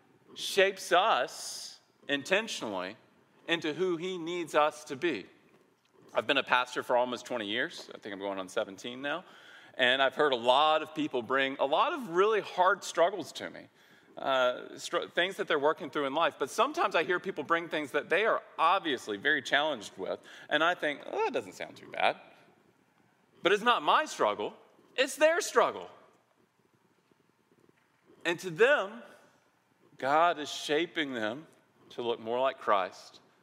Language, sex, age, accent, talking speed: English, male, 40-59, American, 165 wpm